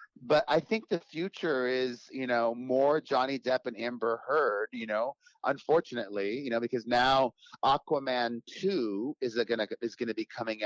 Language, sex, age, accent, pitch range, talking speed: English, male, 40-59, American, 120-155 Hz, 160 wpm